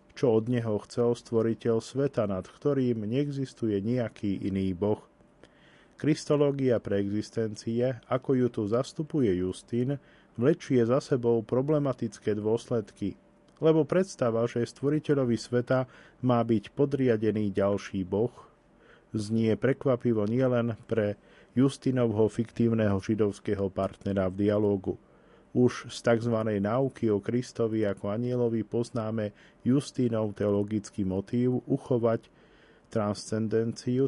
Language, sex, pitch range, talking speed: Slovak, male, 105-130 Hz, 105 wpm